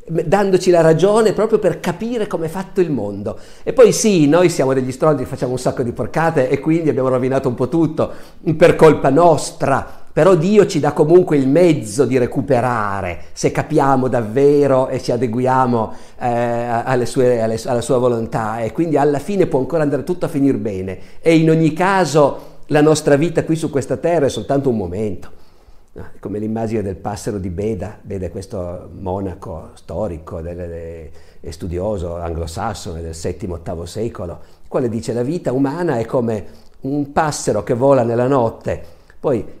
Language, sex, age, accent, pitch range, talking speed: Italian, male, 50-69, native, 110-160 Hz, 165 wpm